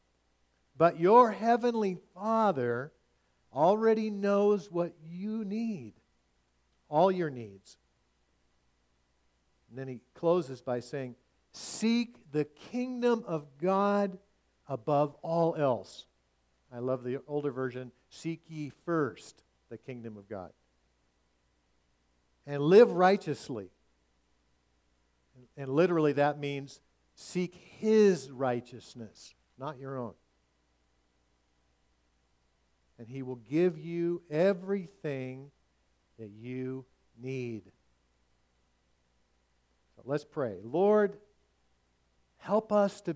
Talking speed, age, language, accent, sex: 95 wpm, 50-69, English, American, male